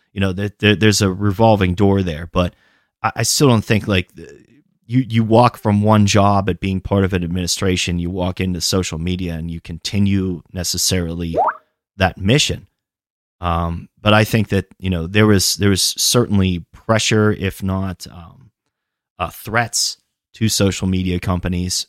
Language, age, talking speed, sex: English, 30-49, 160 wpm, male